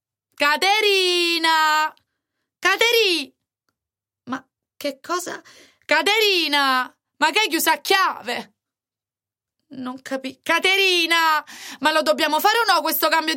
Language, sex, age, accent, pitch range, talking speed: Italian, female, 20-39, native, 225-330 Hz, 105 wpm